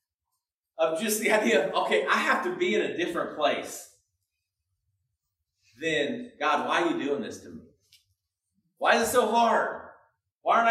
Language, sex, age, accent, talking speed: English, male, 40-59, American, 170 wpm